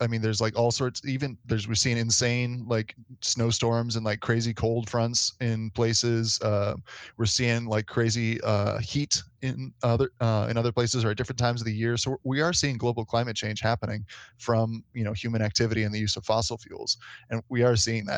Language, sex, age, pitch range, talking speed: English, male, 20-39, 110-125 Hz, 210 wpm